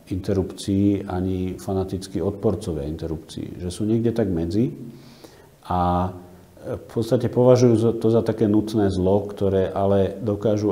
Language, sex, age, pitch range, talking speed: Slovak, male, 40-59, 90-105 Hz, 125 wpm